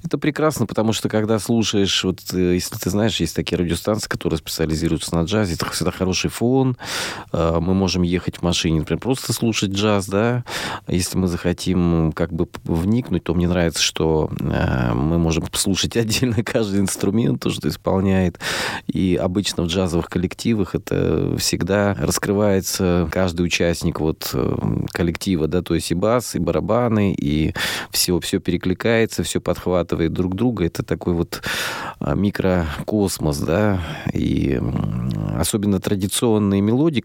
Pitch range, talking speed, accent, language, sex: 85-110 Hz, 140 wpm, native, Russian, male